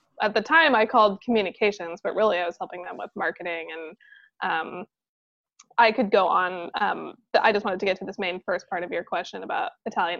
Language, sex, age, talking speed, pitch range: English, female, 20-39, 210 wpm, 180-225 Hz